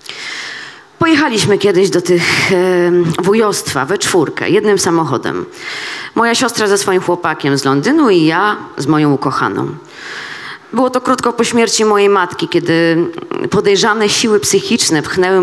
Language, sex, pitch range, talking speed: Polish, female, 160-230 Hz, 130 wpm